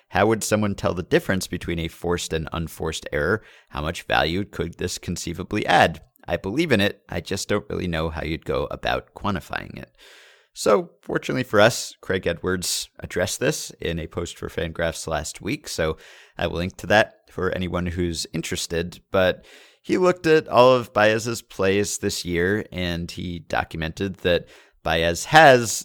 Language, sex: English, male